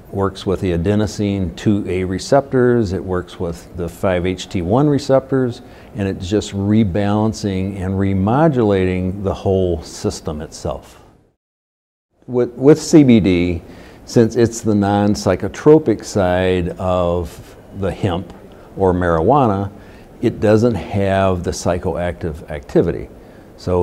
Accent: American